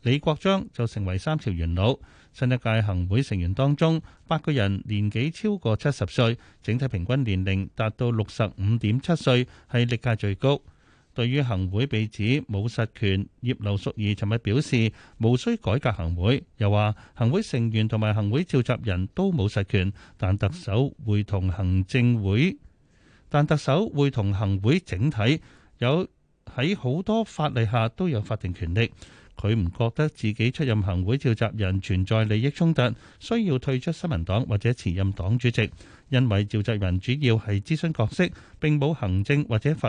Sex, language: male, Chinese